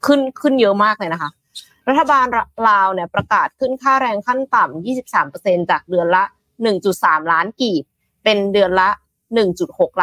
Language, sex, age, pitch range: Thai, female, 20-39, 175-240 Hz